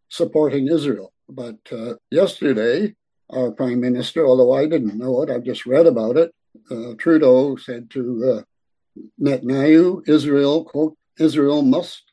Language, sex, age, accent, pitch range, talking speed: English, male, 60-79, American, 125-150 Hz, 145 wpm